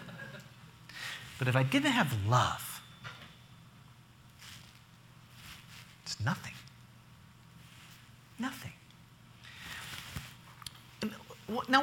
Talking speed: 50 wpm